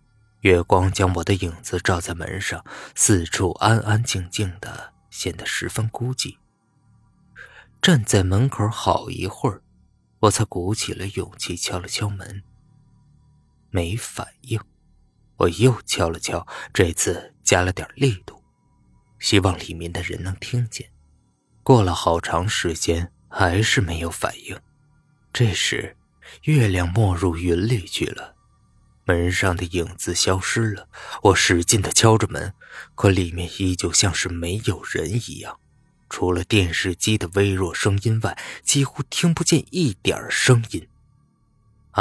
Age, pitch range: 20-39, 90-115 Hz